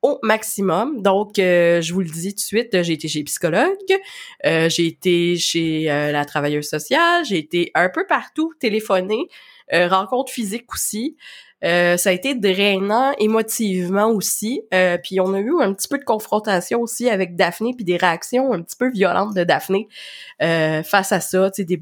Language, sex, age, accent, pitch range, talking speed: French, female, 20-39, Canadian, 180-235 Hz, 185 wpm